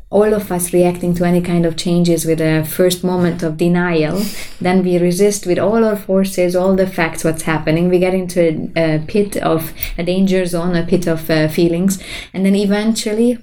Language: English